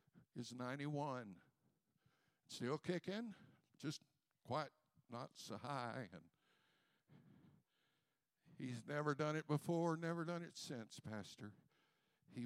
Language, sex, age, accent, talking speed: English, male, 60-79, American, 100 wpm